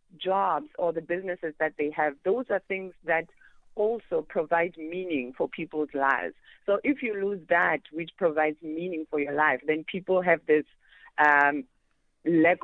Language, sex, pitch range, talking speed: English, female, 150-195 Hz, 160 wpm